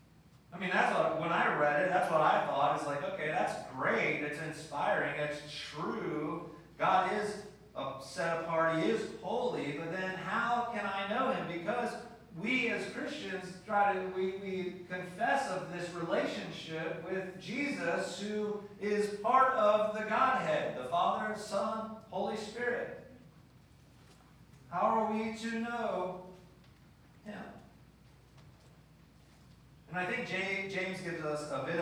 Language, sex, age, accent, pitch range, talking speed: English, male, 40-59, American, 150-205 Hz, 140 wpm